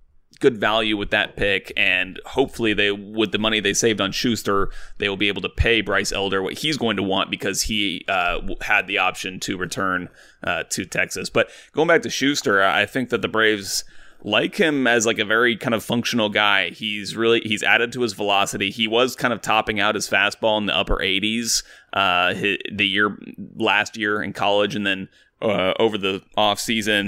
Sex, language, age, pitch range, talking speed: male, English, 30-49, 100-115 Hz, 205 wpm